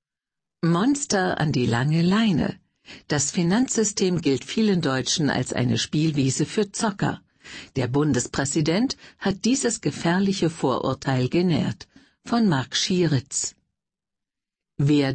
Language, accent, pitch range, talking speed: German, German, 140-195 Hz, 105 wpm